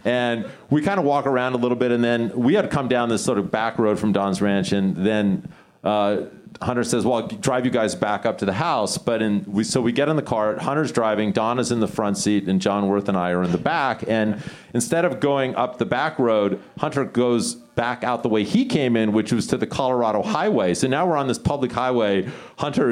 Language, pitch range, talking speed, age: English, 105-125 Hz, 250 wpm, 40-59